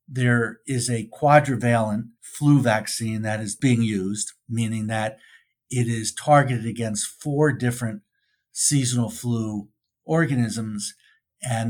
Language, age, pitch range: English, 50-69, 110-140 Hz